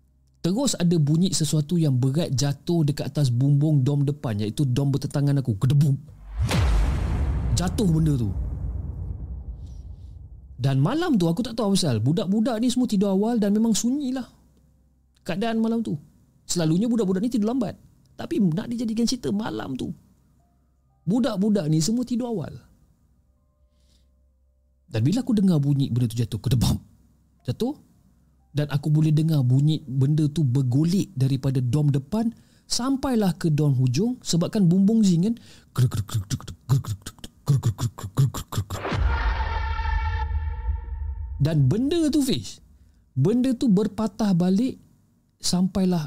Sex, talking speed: male, 125 wpm